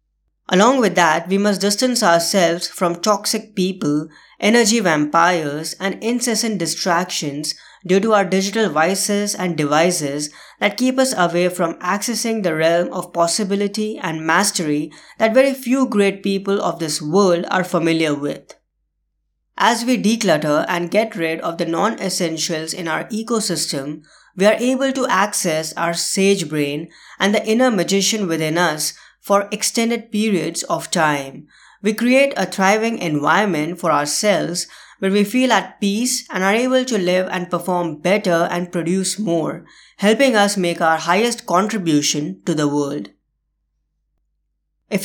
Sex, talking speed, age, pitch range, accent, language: female, 145 wpm, 20-39, 160-210 Hz, Indian, English